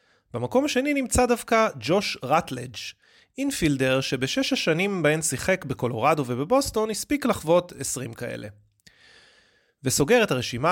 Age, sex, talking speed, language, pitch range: 30-49, male, 110 wpm, Hebrew, 125-185 Hz